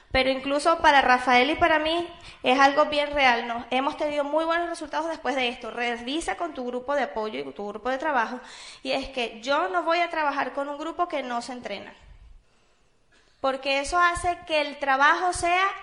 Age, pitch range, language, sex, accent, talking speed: 20-39, 250-335 Hz, Spanish, female, American, 200 wpm